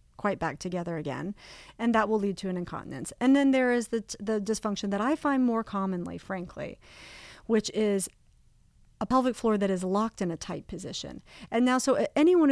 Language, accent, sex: English, American, female